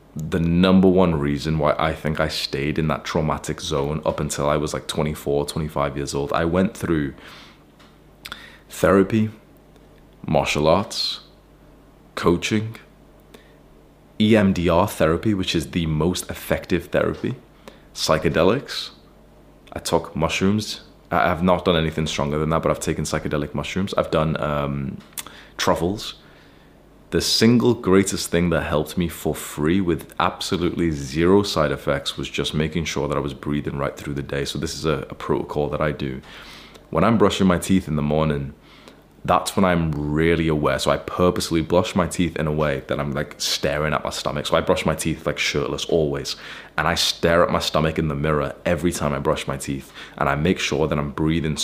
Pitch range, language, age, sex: 75-90 Hz, English, 20-39, male